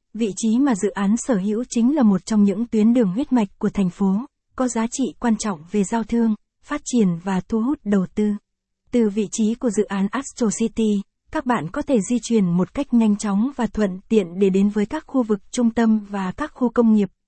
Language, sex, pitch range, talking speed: Vietnamese, female, 205-235 Hz, 235 wpm